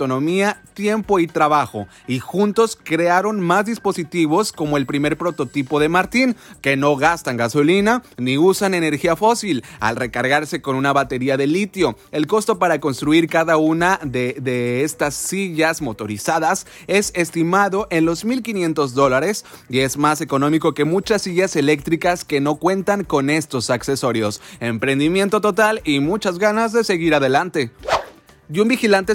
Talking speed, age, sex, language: 150 wpm, 30-49, male, Spanish